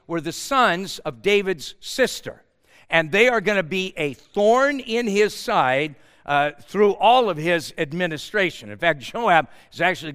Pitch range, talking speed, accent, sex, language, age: 140-190 Hz, 165 wpm, American, male, English, 60-79